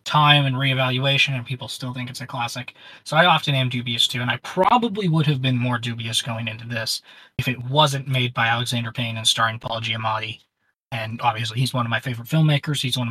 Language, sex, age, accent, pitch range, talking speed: English, male, 20-39, American, 120-145 Hz, 220 wpm